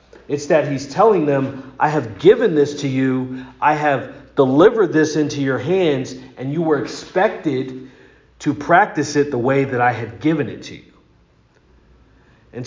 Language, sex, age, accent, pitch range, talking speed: English, male, 40-59, American, 120-150 Hz, 165 wpm